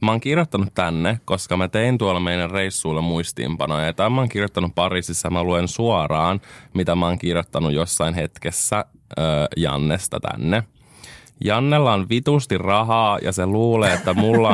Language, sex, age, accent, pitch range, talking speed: Finnish, male, 20-39, native, 90-110 Hz, 155 wpm